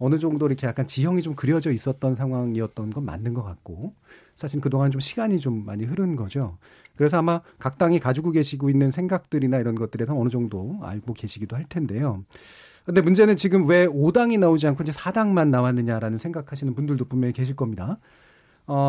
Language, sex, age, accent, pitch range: Korean, male, 40-59, native, 125-175 Hz